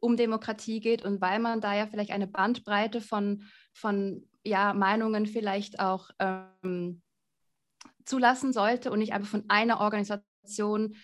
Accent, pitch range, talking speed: German, 195-235 Hz, 140 wpm